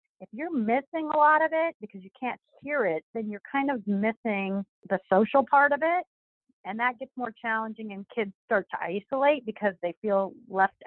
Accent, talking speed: American, 200 wpm